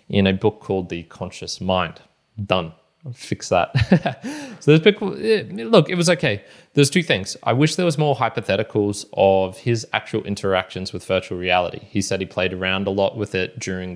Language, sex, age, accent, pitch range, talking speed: English, male, 20-39, Australian, 95-115 Hz, 195 wpm